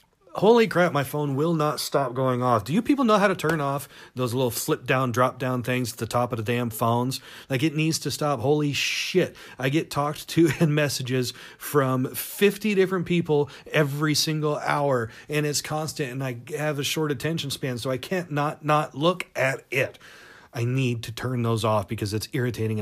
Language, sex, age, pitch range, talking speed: English, male, 40-59, 120-155 Hz, 200 wpm